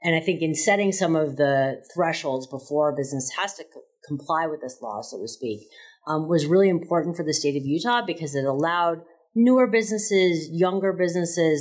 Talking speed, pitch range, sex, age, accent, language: 190 wpm, 140-185 Hz, female, 30-49, American, English